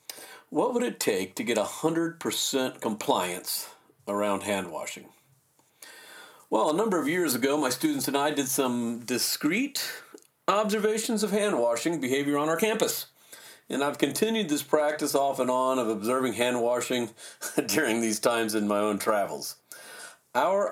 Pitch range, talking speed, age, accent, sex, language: 115-155 Hz, 140 wpm, 40-59, American, male, English